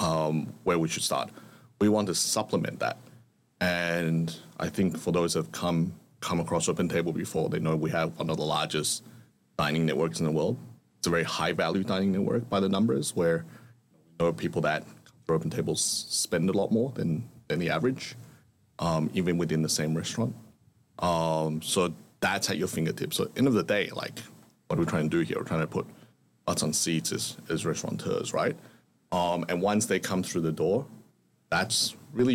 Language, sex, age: English, male, 30-49